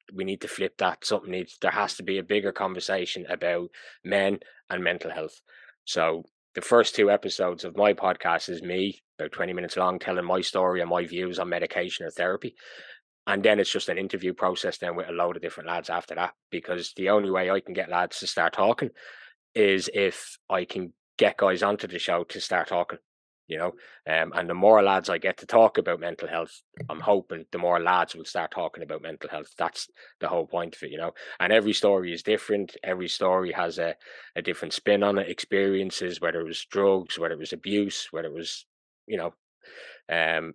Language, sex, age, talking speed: English, male, 20-39, 215 wpm